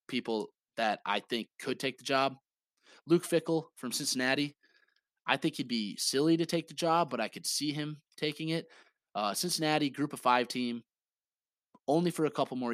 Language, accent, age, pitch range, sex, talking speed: English, American, 20-39, 115-145 Hz, male, 185 wpm